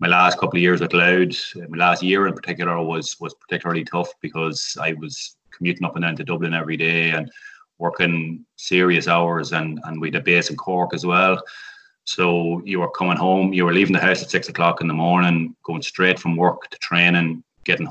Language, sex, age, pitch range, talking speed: English, male, 20-39, 80-90 Hz, 215 wpm